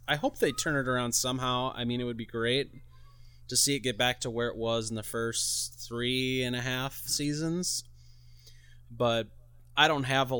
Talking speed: 200 wpm